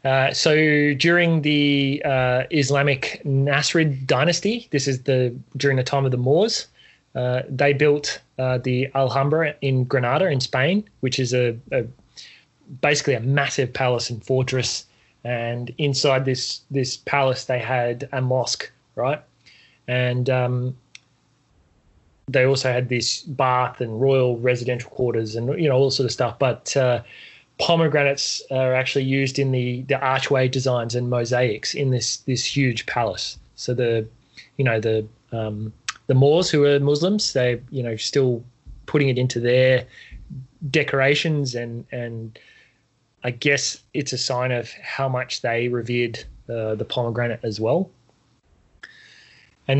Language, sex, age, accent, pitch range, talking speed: English, male, 20-39, Australian, 120-140 Hz, 145 wpm